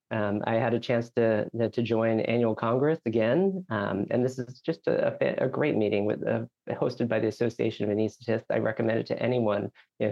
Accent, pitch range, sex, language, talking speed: American, 115-135 Hz, male, English, 210 wpm